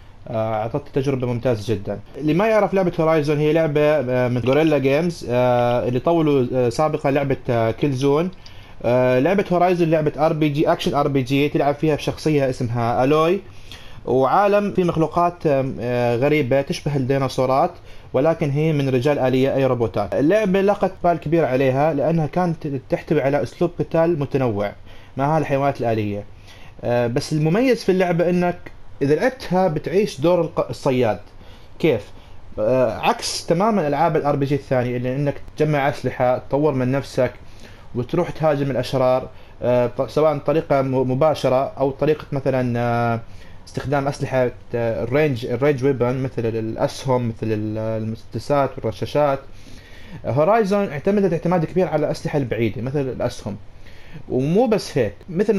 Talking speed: 135 wpm